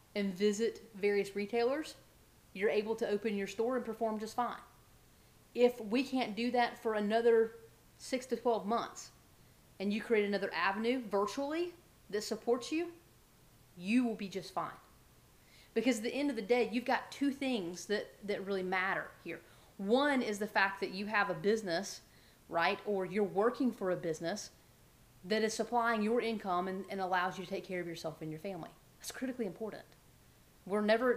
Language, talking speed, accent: English, 180 wpm, American